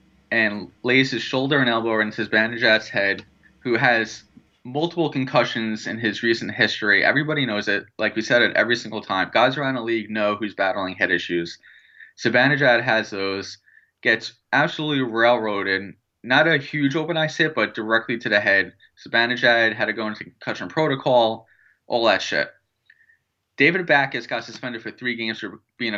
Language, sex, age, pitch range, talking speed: English, male, 20-39, 110-130 Hz, 165 wpm